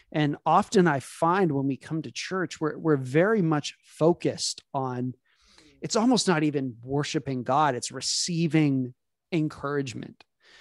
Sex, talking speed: male, 135 wpm